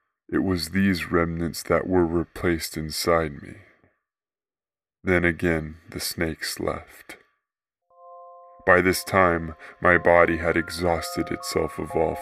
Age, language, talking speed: 20-39, English, 120 wpm